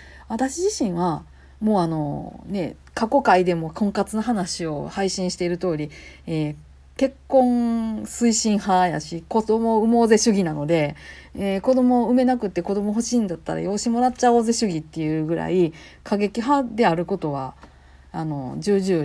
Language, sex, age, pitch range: Japanese, female, 40-59, 150-235 Hz